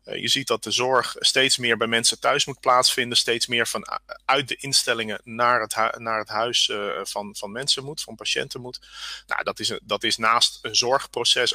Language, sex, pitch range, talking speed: Dutch, male, 115-135 Hz, 220 wpm